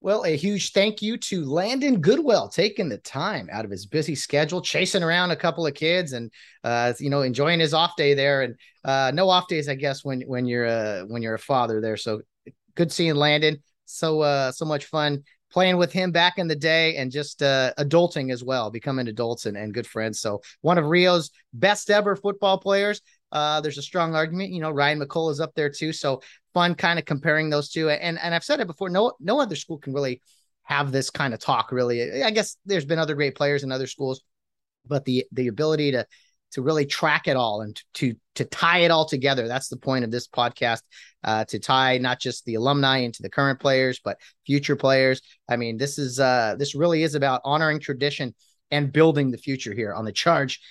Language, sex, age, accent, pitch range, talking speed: English, male, 30-49, American, 130-165 Hz, 220 wpm